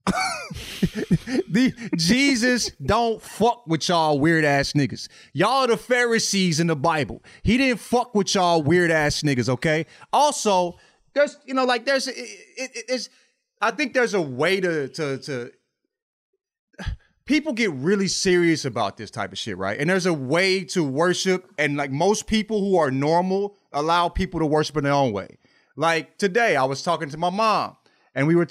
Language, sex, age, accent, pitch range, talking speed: English, male, 30-49, American, 160-245 Hz, 175 wpm